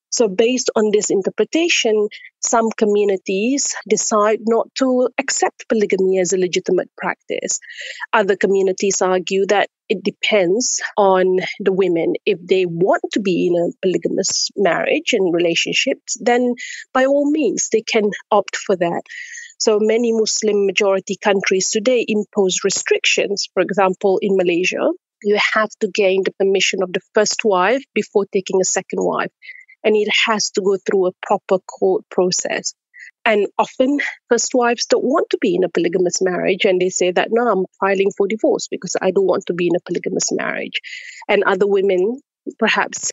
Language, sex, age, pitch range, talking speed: English, female, 30-49, 190-250 Hz, 160 wpm